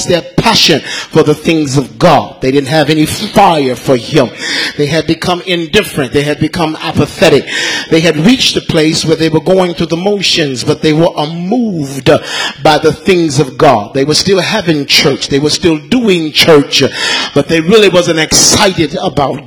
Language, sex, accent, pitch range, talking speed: English, male, American, 145-170 Hz, 180 wpm